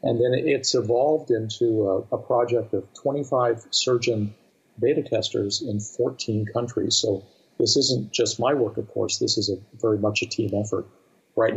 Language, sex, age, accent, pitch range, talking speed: English, male, 50-69, American, 100-115 Hz, 170 wpm